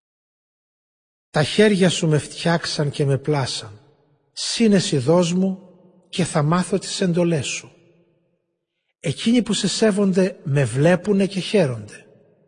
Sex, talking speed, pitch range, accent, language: male, 120 wpm, 135-170 Hz, native, Greek